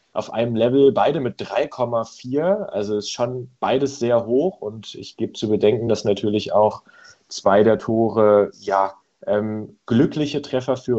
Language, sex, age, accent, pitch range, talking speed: German, male, 30-49, German, 105-125 Hz, 155 wpm